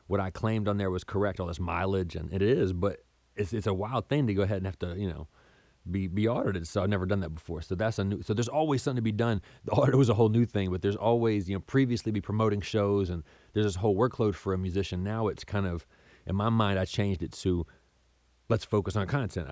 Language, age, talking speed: English, 30-49, 265 wpm